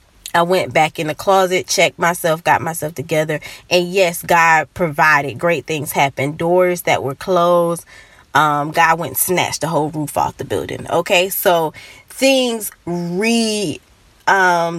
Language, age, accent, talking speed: English, 20-39, American, 155 wpm